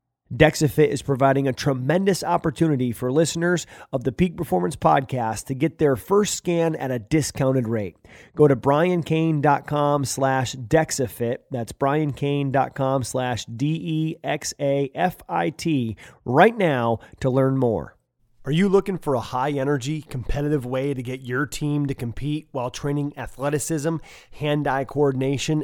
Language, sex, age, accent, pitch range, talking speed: English, male, 30-49, American, 135-180 Hz, 130 wpm